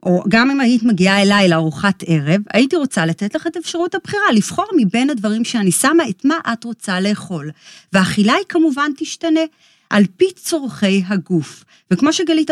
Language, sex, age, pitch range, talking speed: Hebrew, female, 40-59, 190-280 Hz, 170 wpm